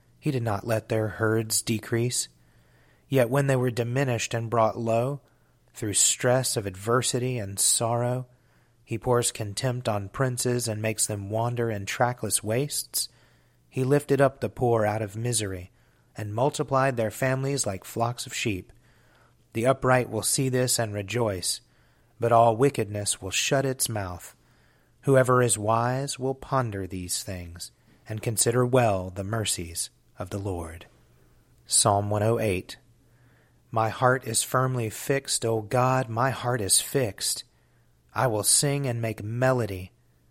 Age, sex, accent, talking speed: 30-49, male, American, 145 wpm